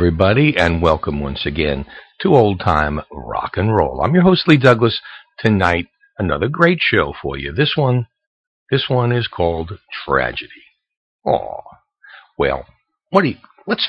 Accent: American